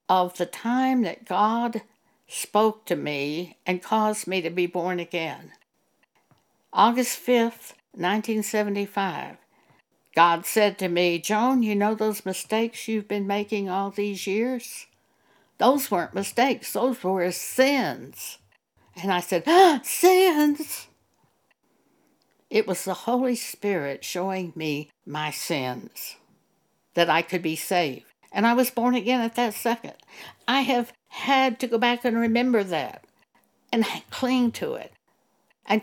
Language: English